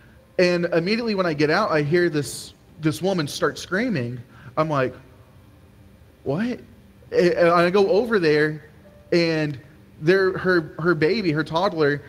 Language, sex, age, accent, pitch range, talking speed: English, male, 20-39, American, 145-190 Hz, 140 wpm